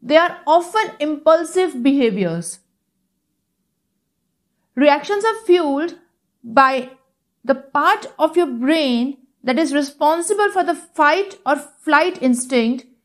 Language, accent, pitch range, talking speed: English, Indian, 250-320 Hz, 105 wpm